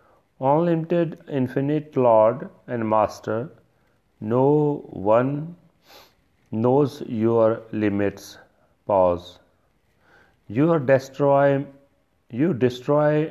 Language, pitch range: Punjabi, 110-135 Hz